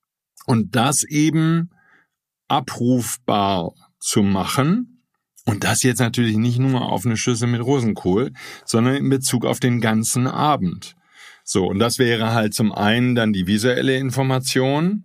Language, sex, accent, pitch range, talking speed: German, male, German, 110-140 Hz, 140 wpm